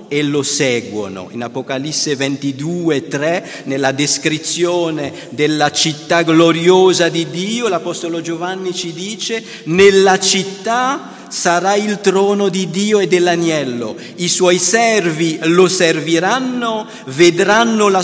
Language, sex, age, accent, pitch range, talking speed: Italian, male, 50-69, native, 135-190 Hz, 115 wpm